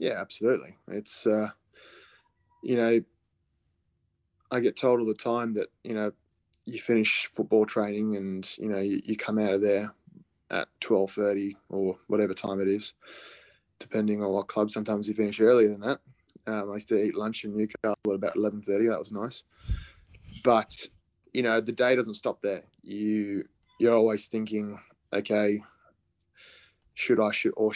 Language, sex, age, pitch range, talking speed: English, male, 20-39, 100-110 Hz, 165 wpm